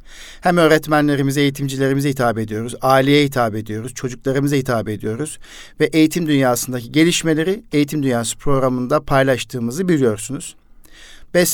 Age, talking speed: 50-69, 110 wpm